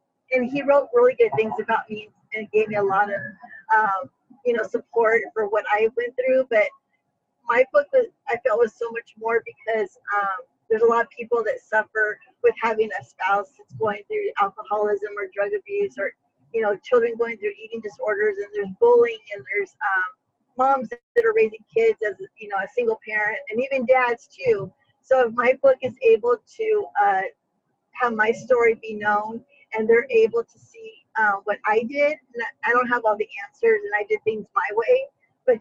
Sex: female